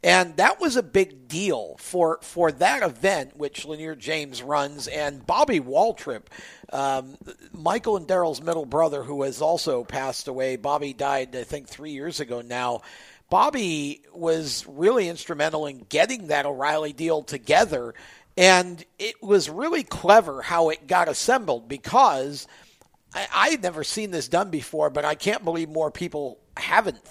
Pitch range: 150-195 Hz